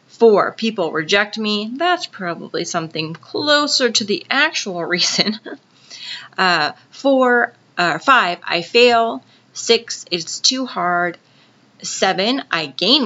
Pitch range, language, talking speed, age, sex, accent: 165-210 Hz, English, 115 wpm, 30-49, female, American